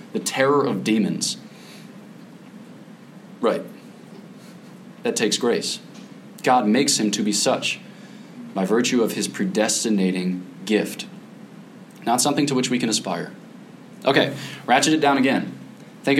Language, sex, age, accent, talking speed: English, male, 20-39, American, 120 wpm